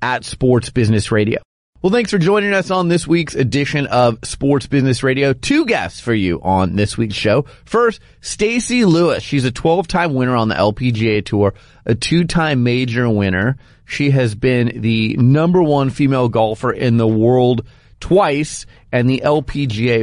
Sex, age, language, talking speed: male, 30-49, English, 165 wpm